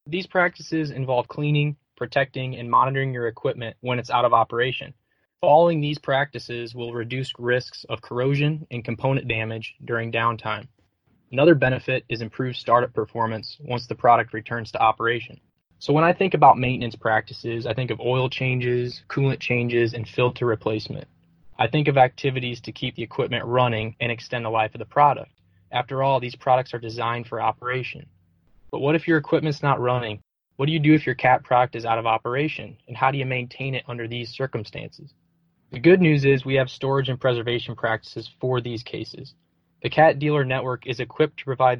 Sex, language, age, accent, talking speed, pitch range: male, English, 20-39, American, 185 wpm, 115-135 Hz